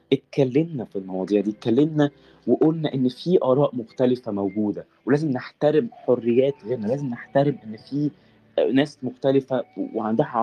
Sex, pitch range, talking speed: male, 120-150 Hz, 125 wpm